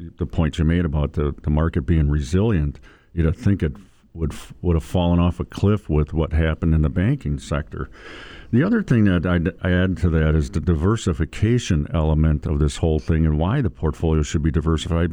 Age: 50-69